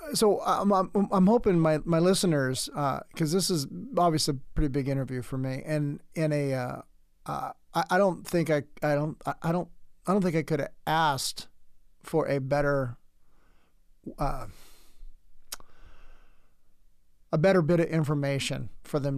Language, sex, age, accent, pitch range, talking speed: English, male, 40-59, American, 135-165 Hz, 160 wpm